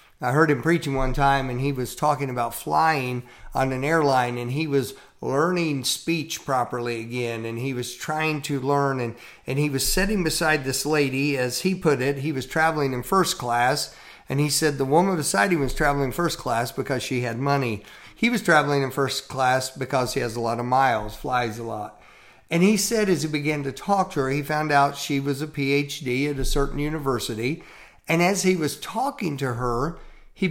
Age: 50-69